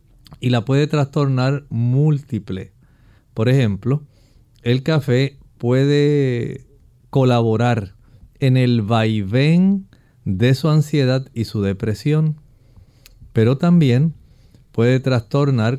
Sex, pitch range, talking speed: male, 115-135 Hz, 90 wpm